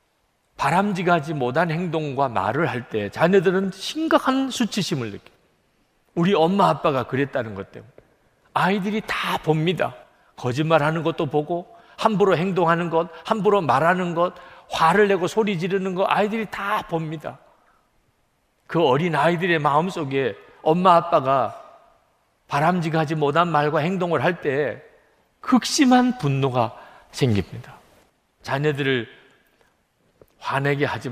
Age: 40-59